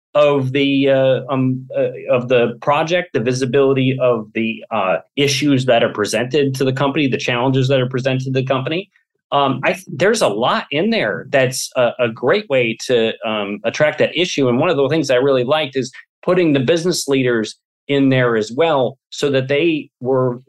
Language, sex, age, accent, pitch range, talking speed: English, male, 30-49, American, 120-145 Hz, 195 wpm